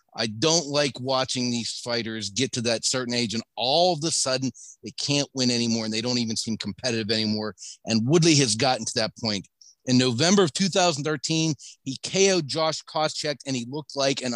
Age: 40-59